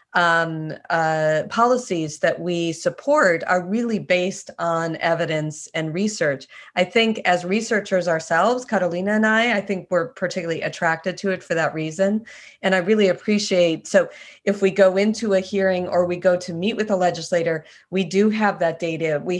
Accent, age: American, 30-49